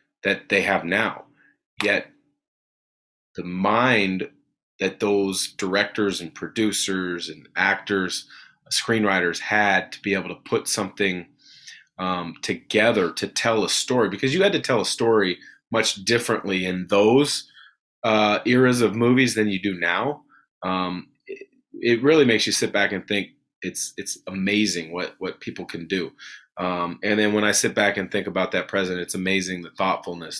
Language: English